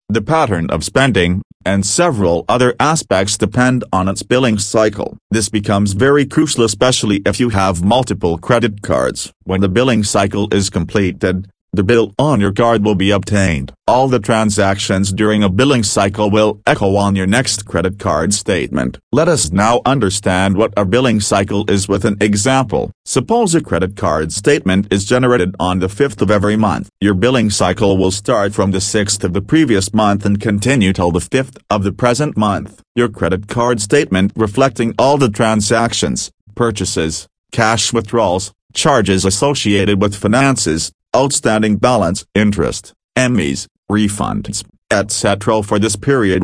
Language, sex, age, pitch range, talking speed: English, male, 40-59, 95-120 Hz, 160 wpm